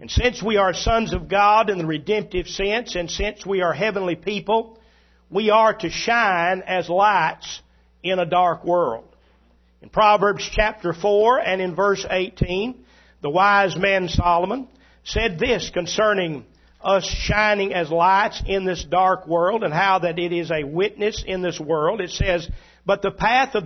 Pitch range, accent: 170-215 Hz, American